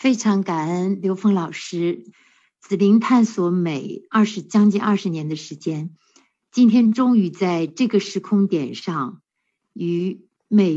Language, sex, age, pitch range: Chinese, female, 60-79, 175-220 Hz